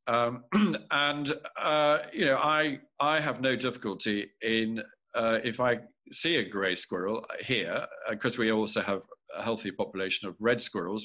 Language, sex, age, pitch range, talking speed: English, male, 50-69, 110-135 Hz, 165 wpm